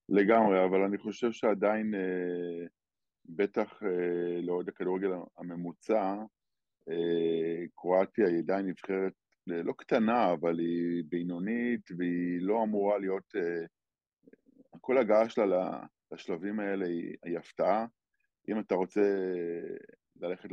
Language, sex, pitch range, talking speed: Hebrew, male, 85-105 Hz, 120 wpm